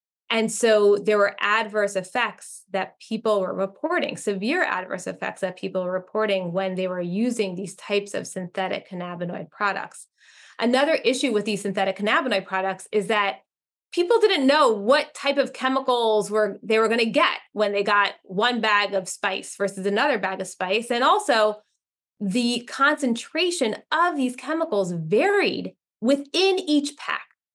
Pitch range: 195-245 Hz